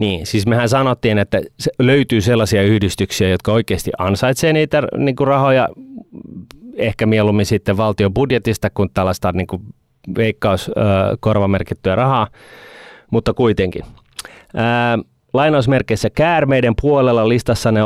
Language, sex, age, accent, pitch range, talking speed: Finnish, male, 30-49, native, 95-120 Hz, 110 wpm